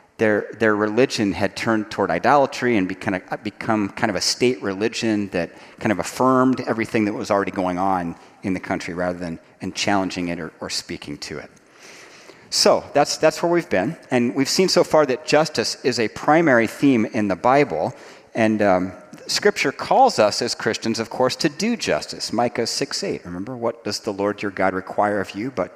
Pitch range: 100-135 Hz